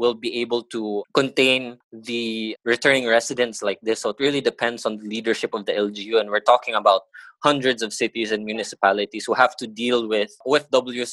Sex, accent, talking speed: male, Filipino, 190 wpm